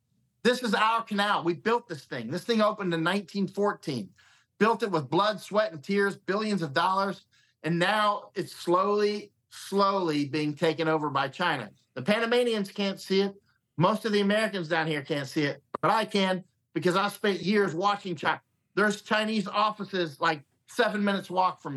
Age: 50-69